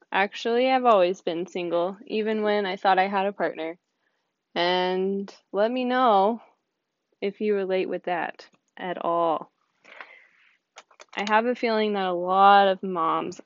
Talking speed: 145 wpm